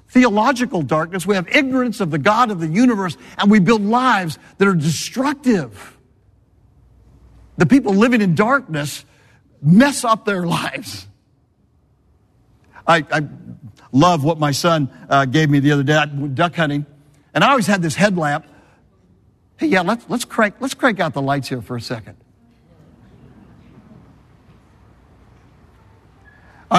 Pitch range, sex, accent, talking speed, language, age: 125-200 Hz, male, American, 135 wpm, English, 60-79